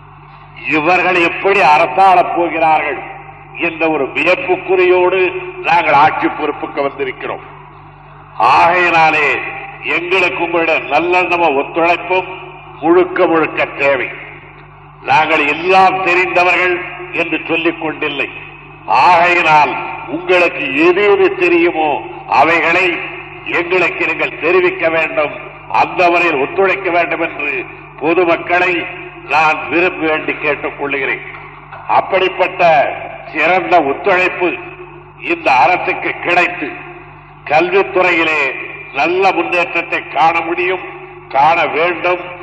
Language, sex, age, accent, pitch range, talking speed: Tamil, male, 50-69, native, 165-185 Hz, 80 wpm